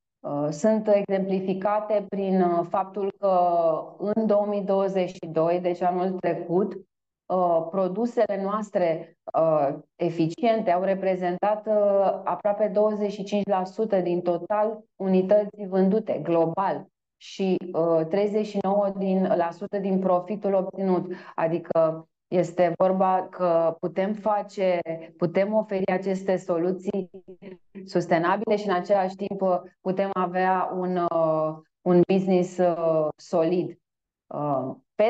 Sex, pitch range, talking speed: female, 175-205 Hz, 85 wpm